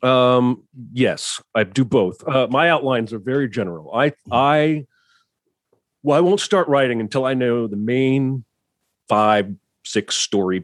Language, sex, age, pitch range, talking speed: English, male, 40-59, 95-130 Hz, 145 wpm